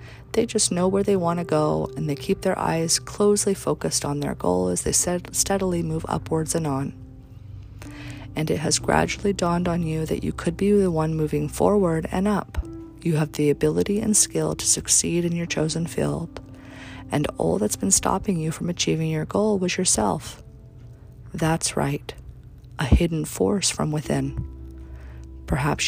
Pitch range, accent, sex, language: 115-175 Hz, American, female, English